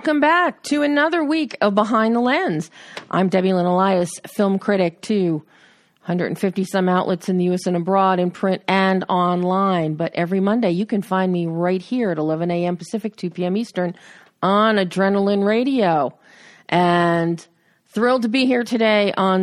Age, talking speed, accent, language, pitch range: 40-59, 165 wpm, American, English, 175-210 Hz